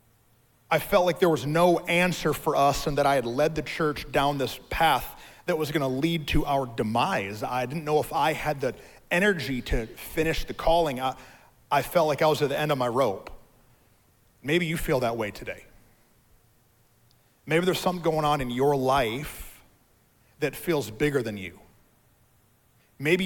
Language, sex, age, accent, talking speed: English, male, 30-49, American, 185 wpm